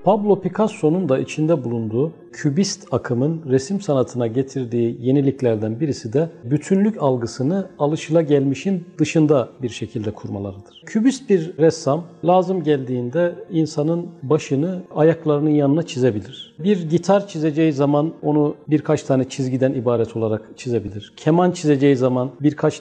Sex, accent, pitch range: male, native, 130-175 Hz